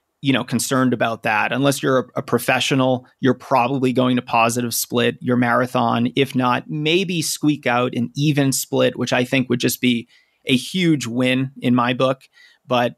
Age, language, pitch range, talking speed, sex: 30-49, English, 125-140 Hz, 180 wpm, male